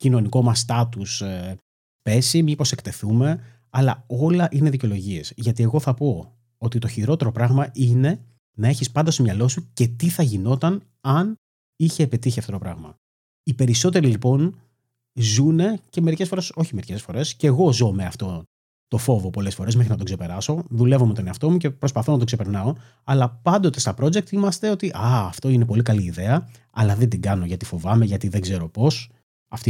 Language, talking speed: Greek, 185 wpm